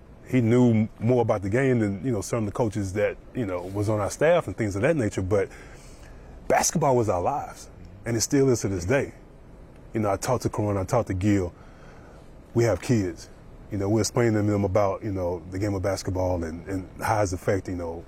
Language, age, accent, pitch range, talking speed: English, 20-39, American, 95-115 Hz, 230 wpm